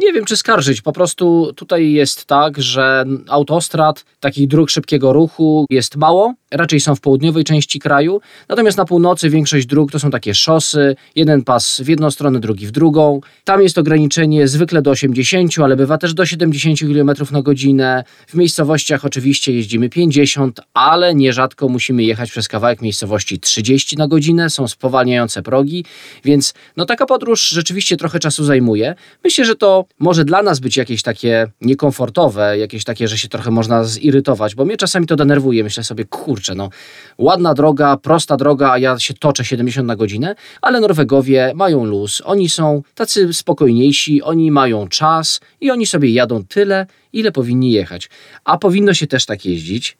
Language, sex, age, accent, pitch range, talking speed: Polish, male, 20-39, native, 125-155 Hz, 170 wpm